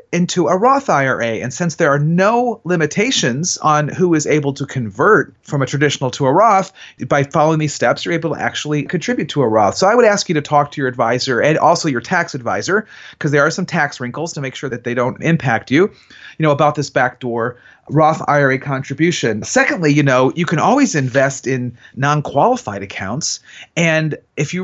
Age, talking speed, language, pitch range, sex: 30-49, 205 wpm, English, 130-175 Hz, male